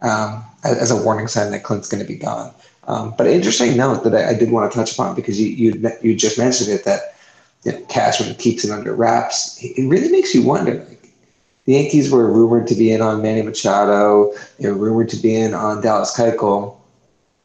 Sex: male